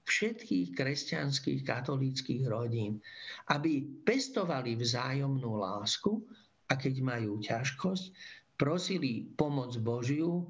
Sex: male